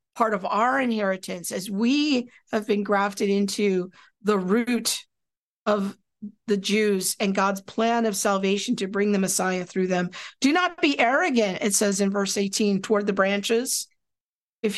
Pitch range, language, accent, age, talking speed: 195-235 Hz, English, American, 50-69, 160 wpm